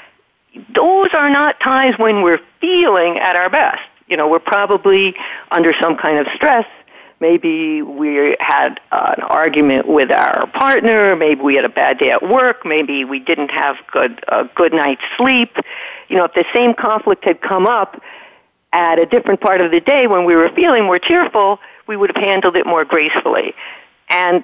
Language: English